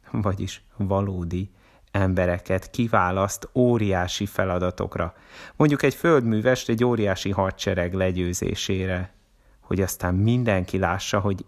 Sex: male